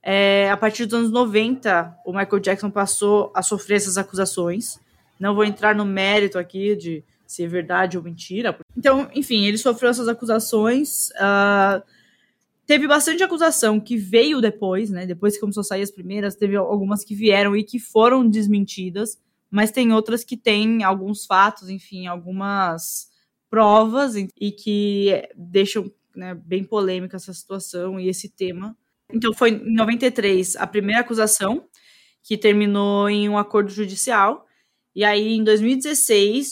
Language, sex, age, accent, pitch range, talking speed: Portuguese, female, 10-29, Brazilian, 195-230 Hz, 155 wpm